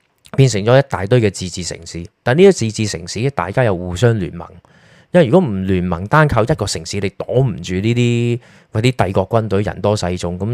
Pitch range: 95-125 Hz